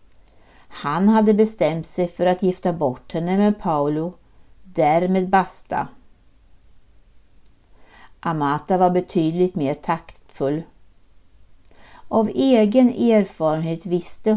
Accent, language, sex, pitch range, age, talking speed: native, Swedish, female, 160-225 Hz, 60-79, 90 wpm